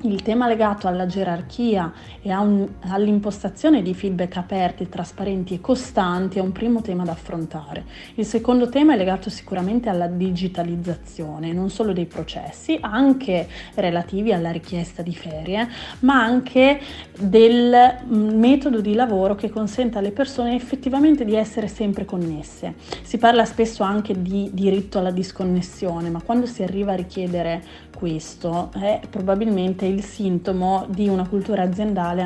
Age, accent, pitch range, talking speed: 30-49, native, 185-235 Hz, 145 wpm